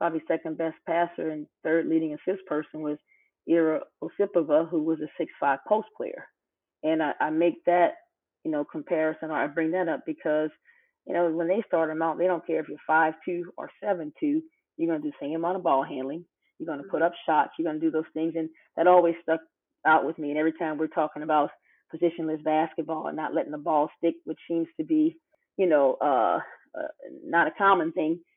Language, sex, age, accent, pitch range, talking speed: English, female, 30-49, American, 160-185 Hz, 220 wpm